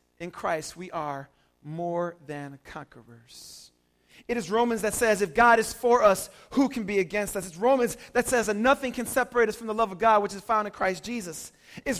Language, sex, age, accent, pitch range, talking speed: English, male, 30-49, American, 180-260 Hz, 215 wpm